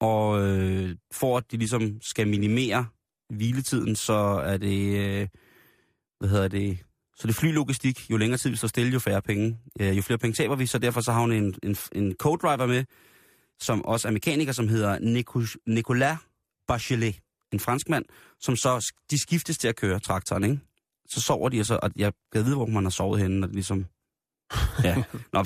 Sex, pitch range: male, 100-125 Hz